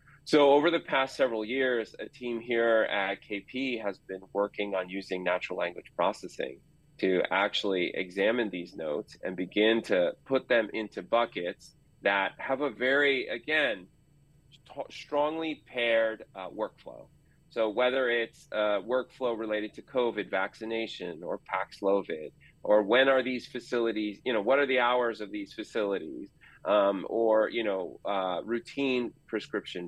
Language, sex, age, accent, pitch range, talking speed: English, male, 30-49, American, 105-135 Hz, 150 wpm